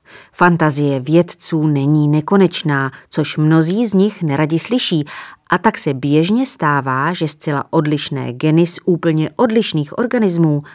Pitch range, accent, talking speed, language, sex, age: 145-190 Hz, native, 130 wpm, Czech, female, 30-49